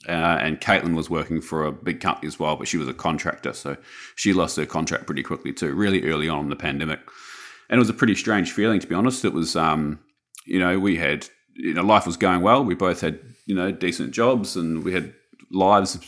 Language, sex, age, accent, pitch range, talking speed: English, male, 30-49, Australian, 80-95 Hz, 240 wpm